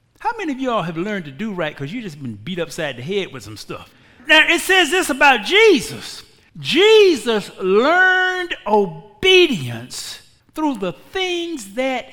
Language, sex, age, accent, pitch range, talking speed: English, male, 50-69, American, 185-275 Hz, 165 wpm